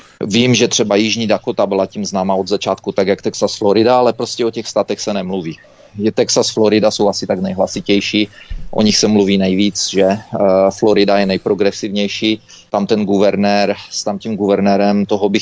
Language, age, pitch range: Czech, 30-49, 100-110 Hz